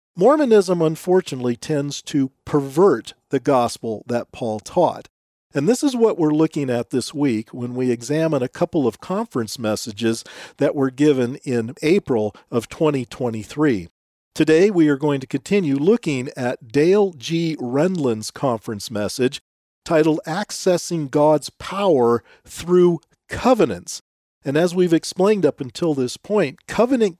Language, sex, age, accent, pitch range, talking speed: English, male, 50-69, American, 125-175 Hz, 135 wpm